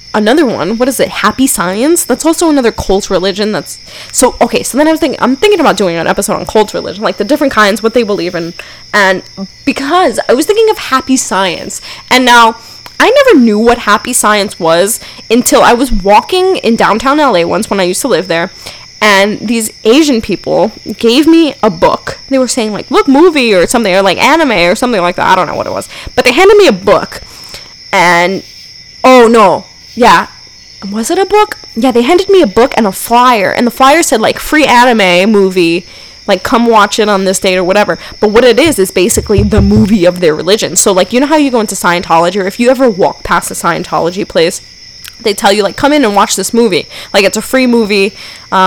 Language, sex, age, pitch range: English, female, 10-29, 190-260 Hz